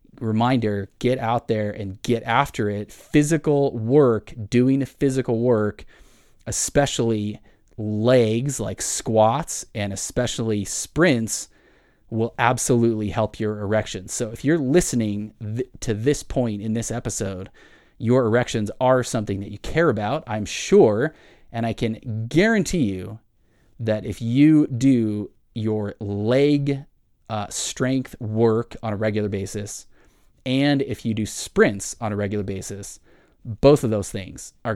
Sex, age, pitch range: male, 30-49, 105-130 Hz